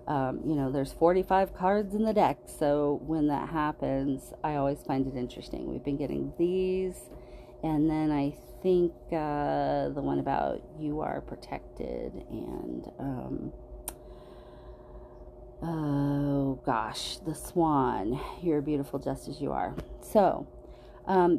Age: 40-59